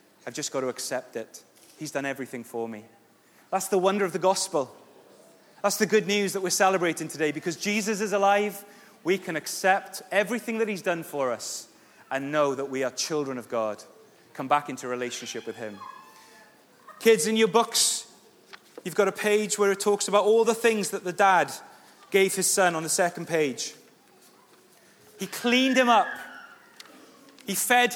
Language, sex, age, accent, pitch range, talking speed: English, male, 30-49, British, 165-220 Hz, 180 wpm